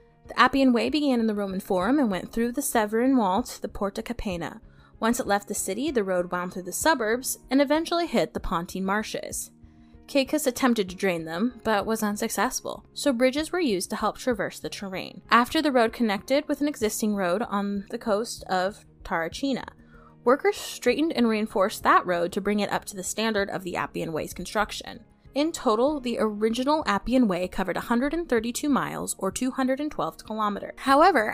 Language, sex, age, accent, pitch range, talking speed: English, female, 10-29, American, 190-260 Hz, 185 wpm